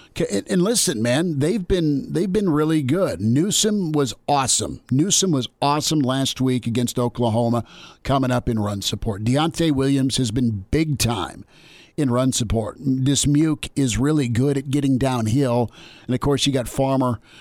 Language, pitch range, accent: English, 125-150 Hz, American